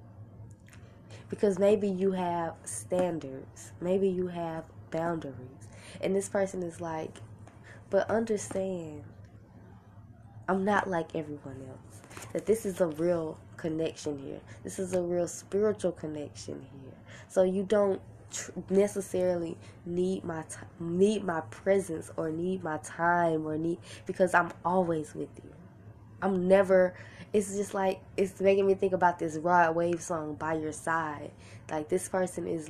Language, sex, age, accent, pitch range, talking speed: English, female, 10-29, American, 115-180 Hz, 145 wpm